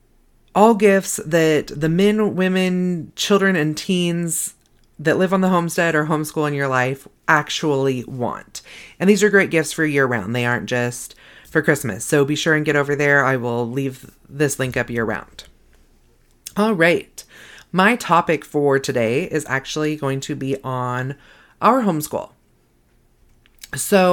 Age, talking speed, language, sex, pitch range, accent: 30-49, 160 wpm, English, female, 140-185 Hz, American